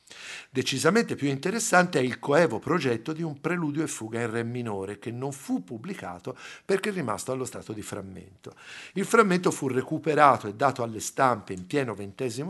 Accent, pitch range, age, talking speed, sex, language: native, 110-160 Hz, 50-69, 180 wpm, male, Italian